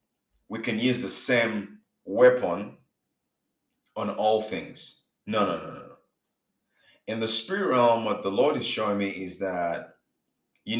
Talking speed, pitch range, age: 145 wpm, 105-175 Hz, 30-49